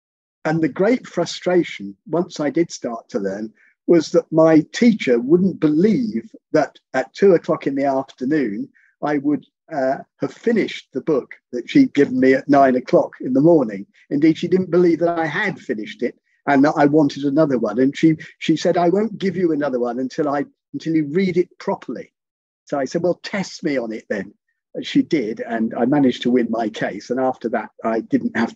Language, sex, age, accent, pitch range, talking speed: English, male, 50-69, British, 130-180 Hz, 200 wpm